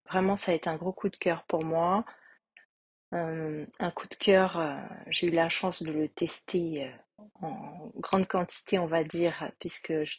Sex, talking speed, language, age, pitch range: female, 195 wpm, French, 30-49, 170-195 Hz